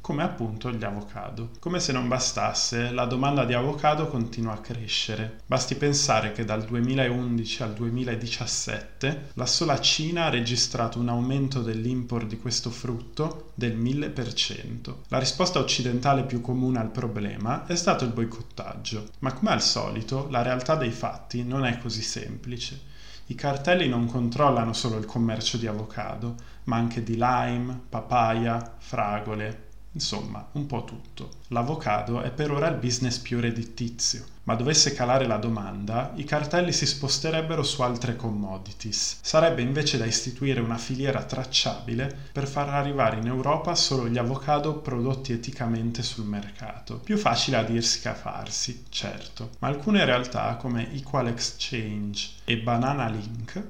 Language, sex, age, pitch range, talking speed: Italian, male, 20-39, 115-135 Hz, 150 wpm